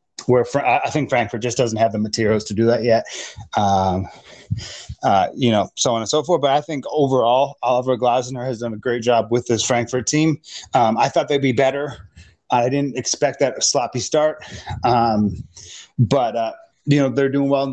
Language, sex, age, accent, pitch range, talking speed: English, male, 30-49, American, 115-140 Hz, 205 wpm